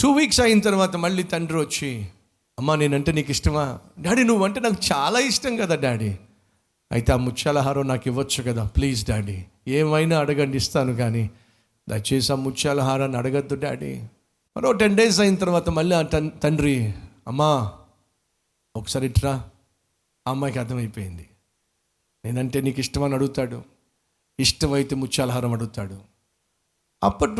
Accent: native